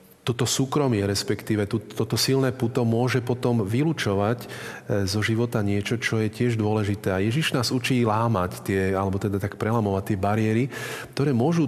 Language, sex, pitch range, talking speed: Slovak, male, 100-115 Hz, 155 wpm